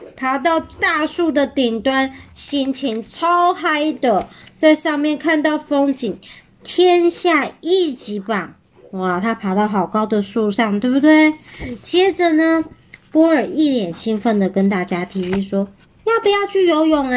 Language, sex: Chinese, male